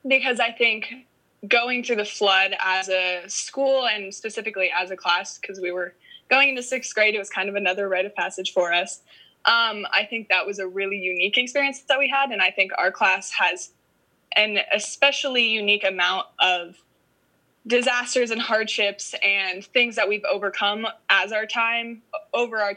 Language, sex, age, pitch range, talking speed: English, female, 20-39, 190-230 Hz, 180 wpm